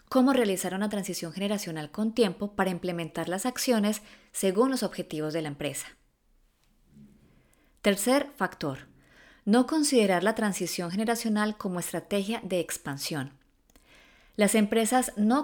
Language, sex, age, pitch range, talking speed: Spanish, female, 20-39, 180-225 Hz, 120 wpm